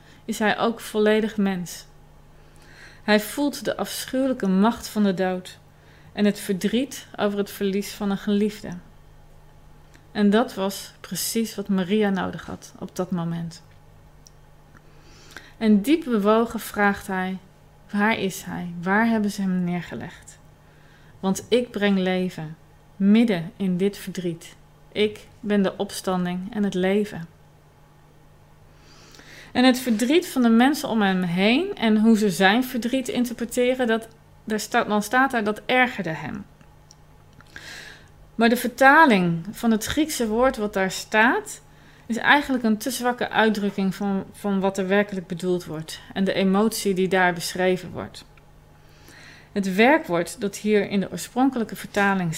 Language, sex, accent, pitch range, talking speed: Dutch, female, Dutch, 185-225 Hz, 135 wpm